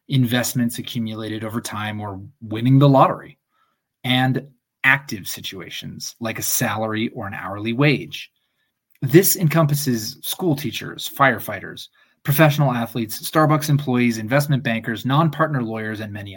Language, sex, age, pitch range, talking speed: English, male, 20-39, 110-145 Hz, 120 wpm